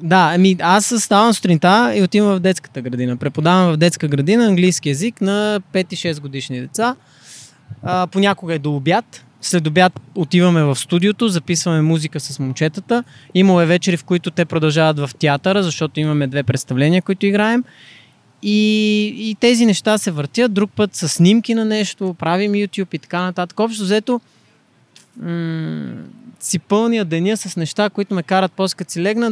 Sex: male